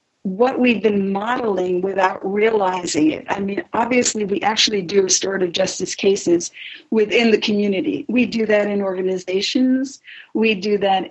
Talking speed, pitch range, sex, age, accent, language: 145 wpm, 190-250 Hz, female, 50-69, American, English